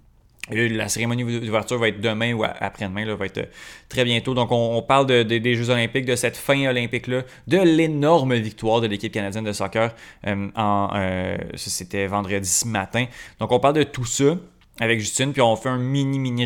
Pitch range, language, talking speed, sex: 105-130 Hz, French, 210 wpm, male